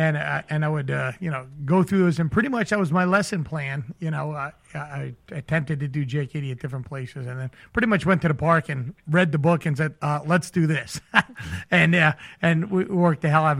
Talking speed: 255 wpm